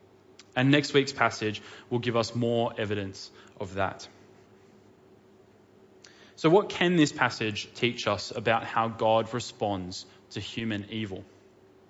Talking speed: 125 wpm